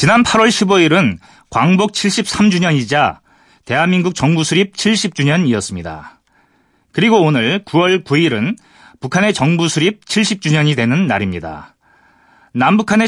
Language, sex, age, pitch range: Korean, male, 30-49, 140-200 Hz